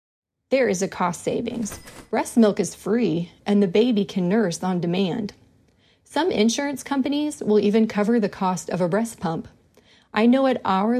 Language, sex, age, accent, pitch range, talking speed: English, female, 30-49, American, 180-230 Hz, 175 wpm